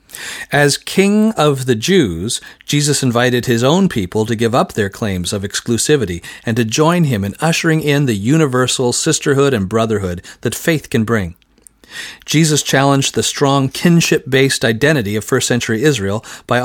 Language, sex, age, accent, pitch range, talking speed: English, male, 40-59, American, 110-140 Hz, 155 wpm